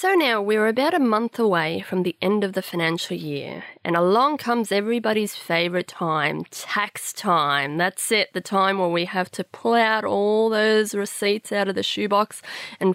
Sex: female